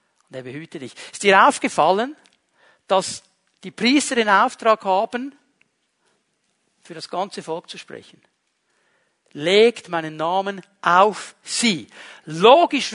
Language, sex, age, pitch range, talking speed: German, male, 60-79, 170-215 Hz, 115 wpm